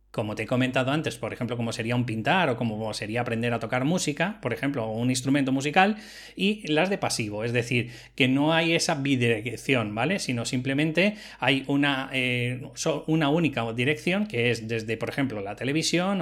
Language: Spanish